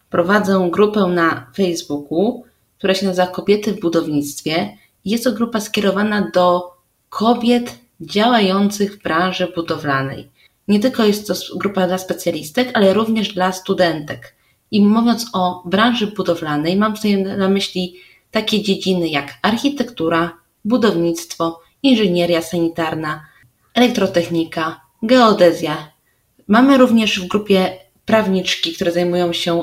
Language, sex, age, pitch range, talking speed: Polish, female, 20-39, 170-220 Hz, 115 wpm